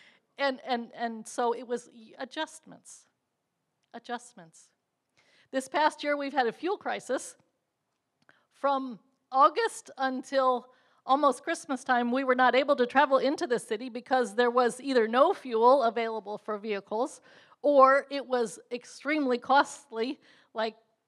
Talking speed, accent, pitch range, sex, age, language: 130 wpm, American, 230-265 Hz, female, 50-69, English